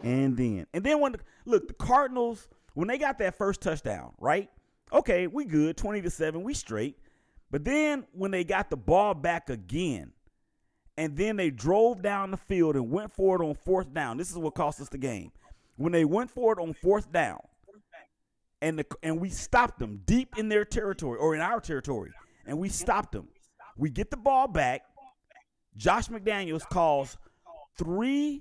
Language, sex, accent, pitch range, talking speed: English, male, American, 140-200 Hz, 185 wpm